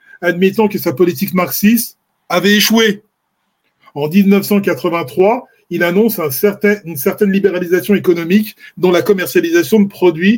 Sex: male